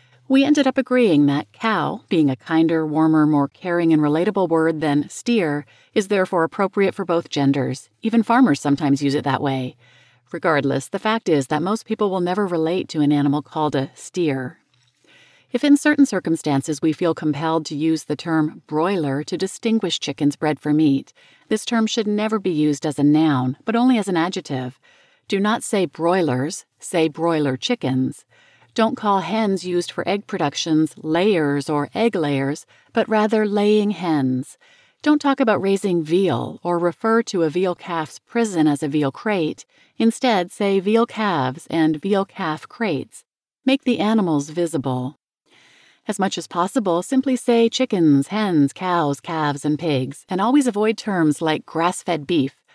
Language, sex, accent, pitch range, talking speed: English, female, American, 145-210 Hz, 165 wpm